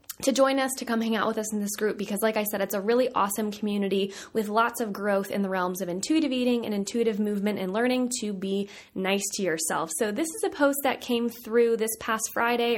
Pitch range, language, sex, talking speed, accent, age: 200-260 Hz, English, female, 245 wpm, American, 20-39